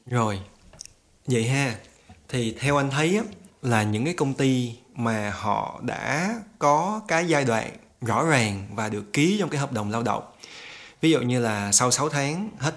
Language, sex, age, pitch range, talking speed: Vietnamese, male, 20-39, 105-140 Hz, 180 wpm